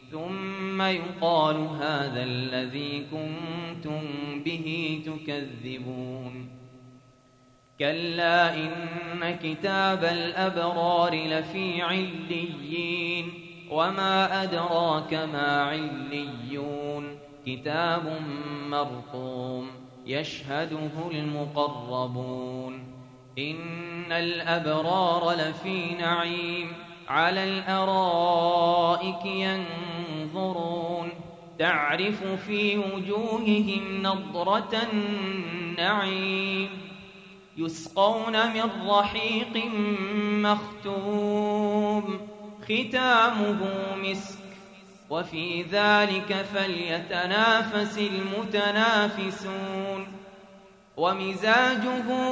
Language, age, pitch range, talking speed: Arabic, 30-49, 155-200 Hz, 50 wpm